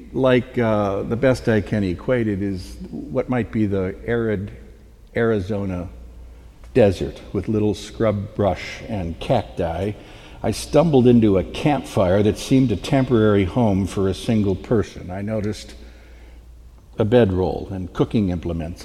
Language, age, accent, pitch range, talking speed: English, 60-79, American, 70-115 Hz, 135 wpm